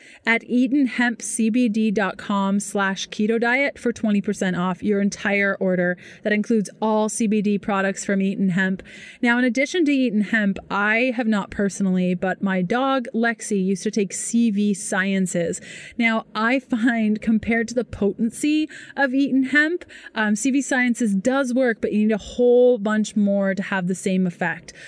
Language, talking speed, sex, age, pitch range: English, 155 wpm, female, 30-49, 195-235 Hz